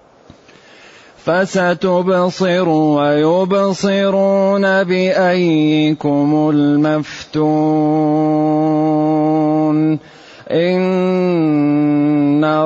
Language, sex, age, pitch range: Arabic, male, 30-49, 155-195 Hz